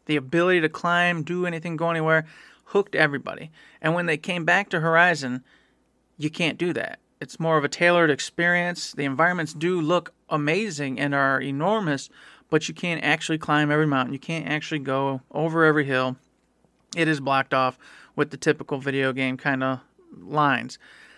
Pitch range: 145-175 Hz